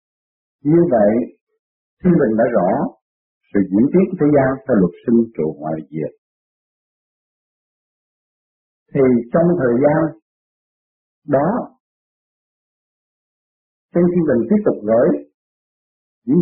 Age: 50-69